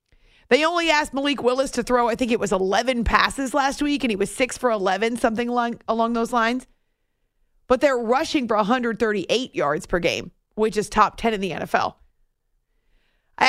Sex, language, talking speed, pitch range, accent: female, English, 180 wpm, 200-245 Hz, American